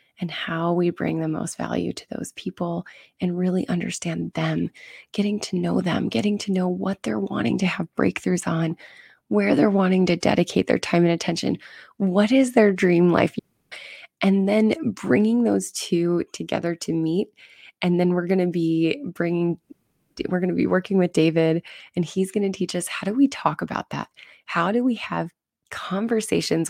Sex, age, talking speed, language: female, 20-39, 180 wpm, English